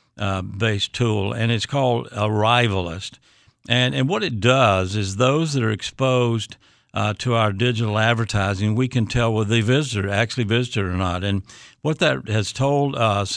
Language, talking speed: English, 170 wpm